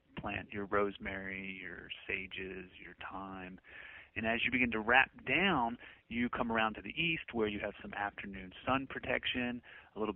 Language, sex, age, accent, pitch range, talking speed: English, male, 30-49, American, 100-120 Hz, 170 wpm